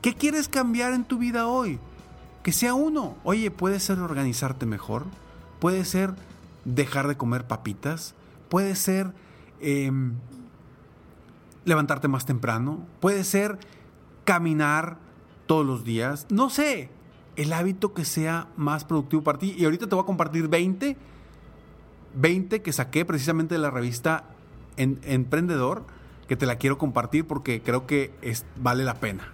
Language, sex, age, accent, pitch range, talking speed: Spanish, male, 40-59, Mexican, 125-200 Hz, 145 wpm